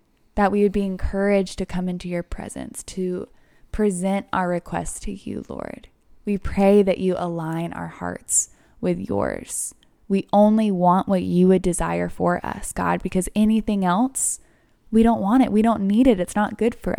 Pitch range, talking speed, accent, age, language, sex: 175-205 Hz, 180 wpm, American, 20-39, English, female